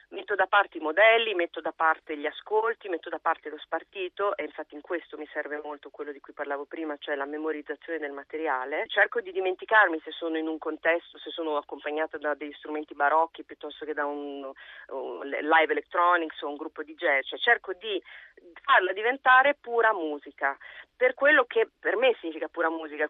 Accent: native